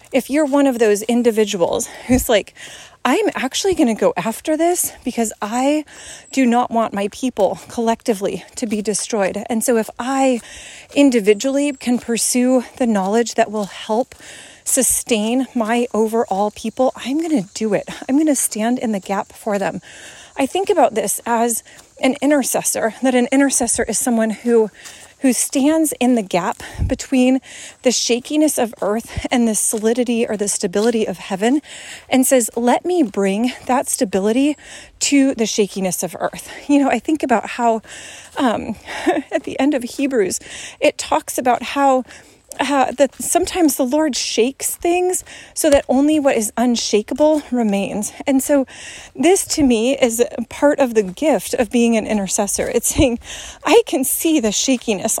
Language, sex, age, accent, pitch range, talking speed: English, female, 30-49, American, 225-285 Hz, 165 wpm